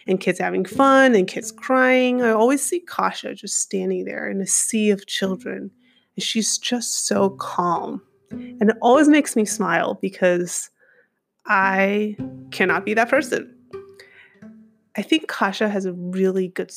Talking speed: 155 wpm